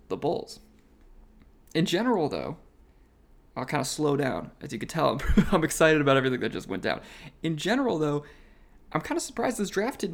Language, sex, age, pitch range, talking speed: English, male, 20-39, 130-165 Hz, 190 wpm